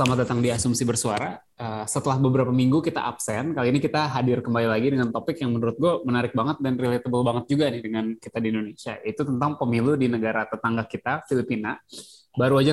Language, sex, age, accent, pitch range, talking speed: Indonesian, male, 20-39, native, 115-135 Hz, 205 wpm